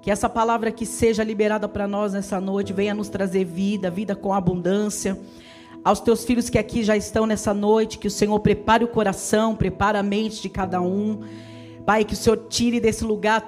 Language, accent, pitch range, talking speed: Portuguese, Brazilian, 200-225 Hz, 200 wpm